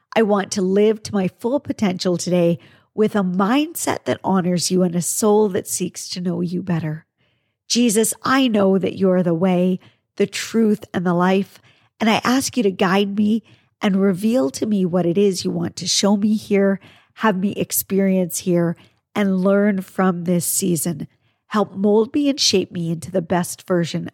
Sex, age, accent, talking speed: female, 50-69, American, 190 wpm